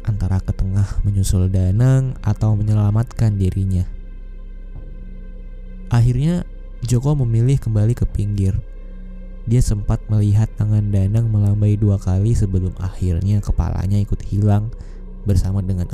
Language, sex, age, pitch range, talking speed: Indonesian, male, 20-39, 95-115 Hz, 110 wpm